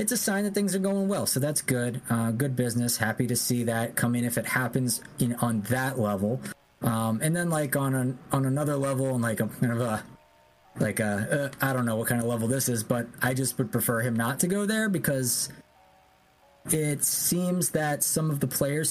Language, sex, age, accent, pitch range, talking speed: English, male, 20-39, American, 115-145 Hz, 230 wpm